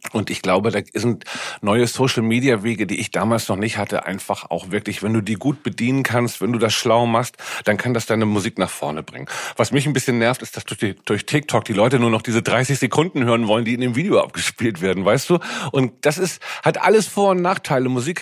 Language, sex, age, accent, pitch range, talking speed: German, male, 40-59, German, 115-135 Hz, 235 wpm